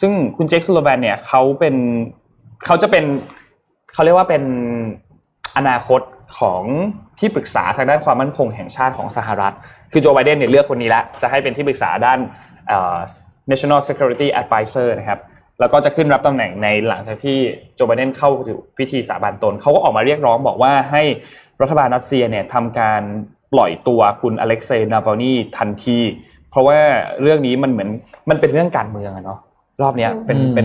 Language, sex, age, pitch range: Thai, male, 20-39, 115-140 Hz